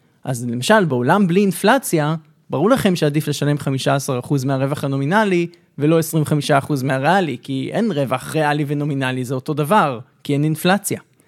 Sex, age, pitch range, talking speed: male, 20-39, 140-185 Hz, 140 wpm